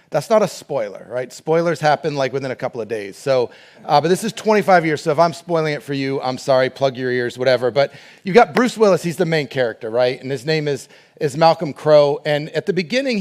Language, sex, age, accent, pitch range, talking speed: English, male, 30-49, American, 140-175 Hz, 245 wpm